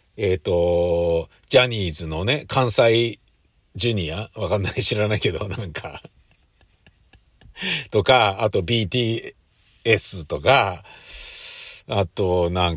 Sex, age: male, 50-69